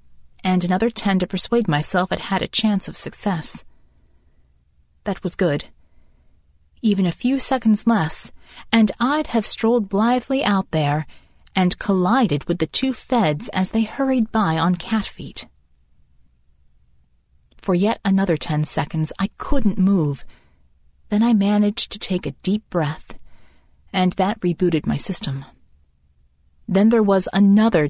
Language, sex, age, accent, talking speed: English, female, 30-49, American, 140 wpm